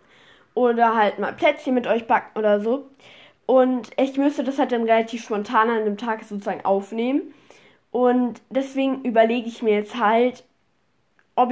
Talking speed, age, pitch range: 155 wpm, 10-29, 215-255 Hz